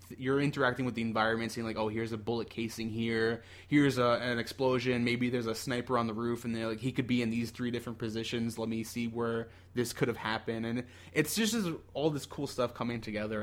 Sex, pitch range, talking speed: male, 105-125 Hz, 235 wpm